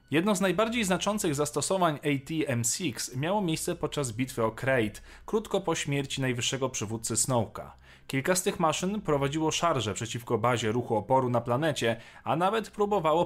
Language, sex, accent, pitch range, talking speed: Polish, male, native, 120-175 Hz, 155 wpm